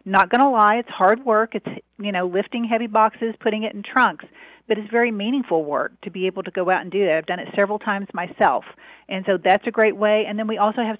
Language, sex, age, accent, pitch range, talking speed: English, female, 50-69, American, 185-220 Hz, 260 wpm